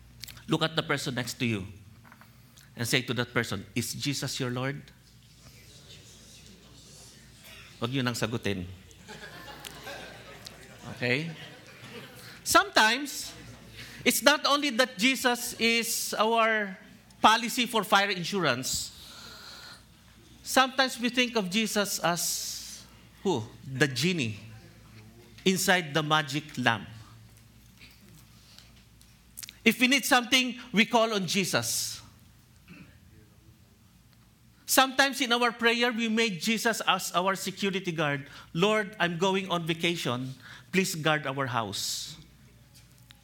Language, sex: English, male